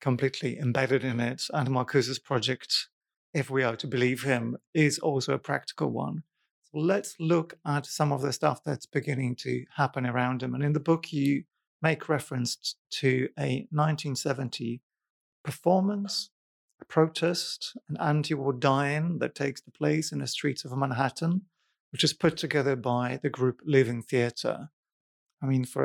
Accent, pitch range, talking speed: British, 125-150 Hz, 160 wpm